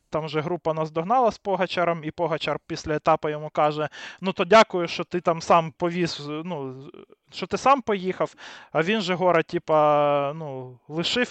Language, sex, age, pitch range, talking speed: Ukrainian, male, 20-39, 145-175 Hz, 165 wpm